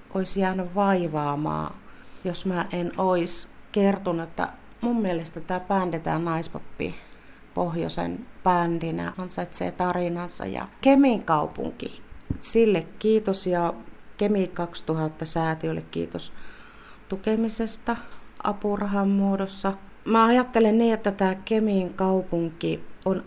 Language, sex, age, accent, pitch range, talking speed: Finnish, female, 40-59, native, 160-210 Hz, 105 wpm